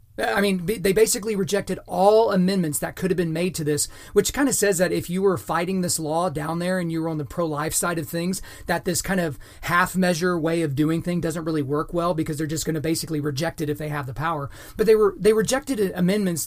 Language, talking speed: English, 250 wpm